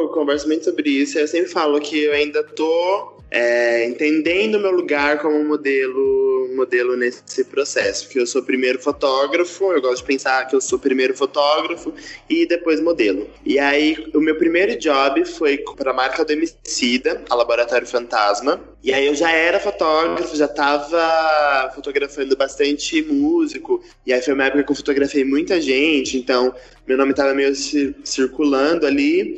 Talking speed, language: 175 wpm, Portuguese